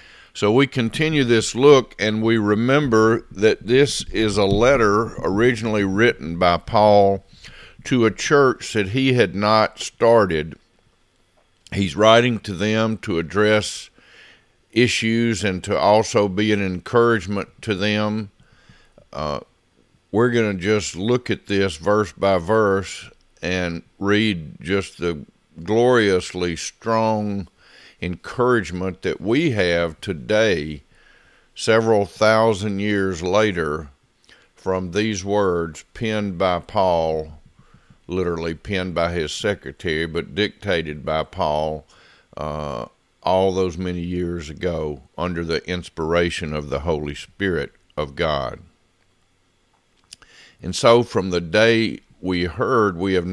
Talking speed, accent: 120 wpm, American